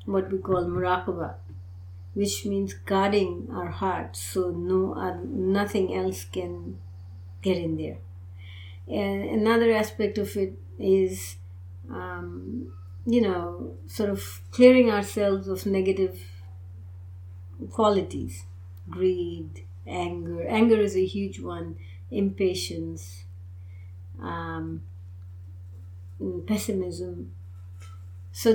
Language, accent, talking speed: English, Indian, 95 wpm